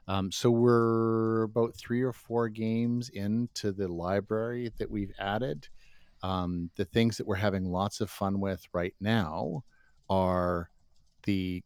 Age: 50-69